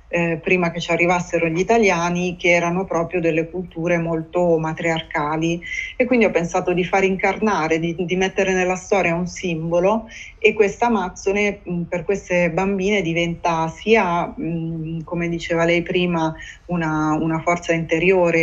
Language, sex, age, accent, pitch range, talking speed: Italian, female, 20-39, native, 170-185 Hz, 145 wpm